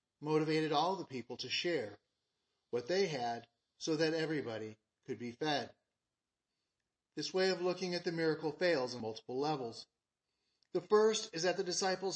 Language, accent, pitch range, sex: English, American, 140-185 Hz, male